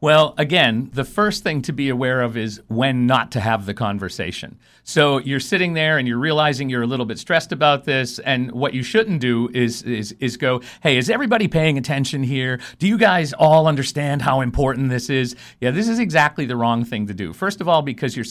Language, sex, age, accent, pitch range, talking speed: English, male, 50-69, American, 110-145 Hz, 225 wpm